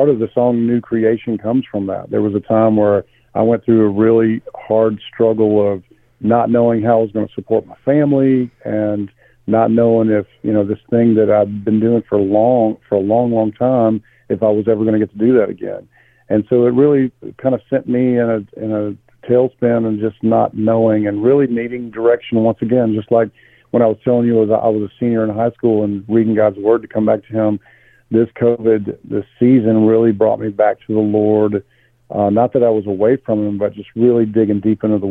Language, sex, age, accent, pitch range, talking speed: English, male, 50-69, American, 105-120 Hz, 230 wpm